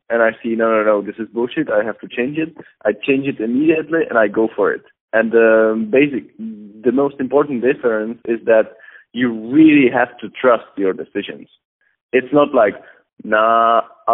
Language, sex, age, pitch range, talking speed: English, male, 20-39, 110-150 Hz, 185 wpm